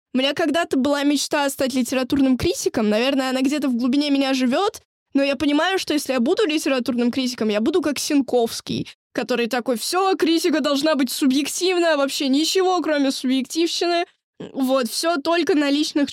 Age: 20-39